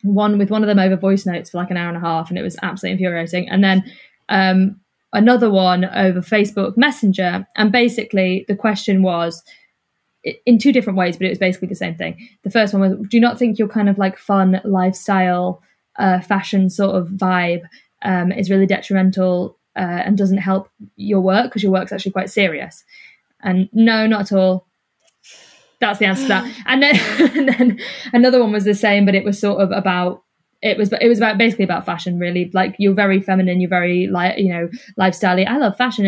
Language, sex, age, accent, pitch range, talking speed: English, female, 10-29, British, 185-220 Hz, 210 wpm